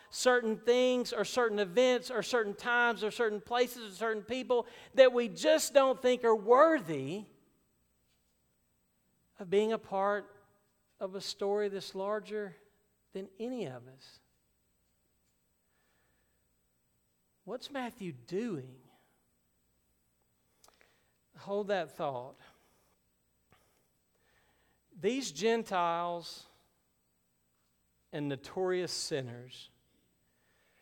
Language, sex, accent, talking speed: English, male, American, 90 wpm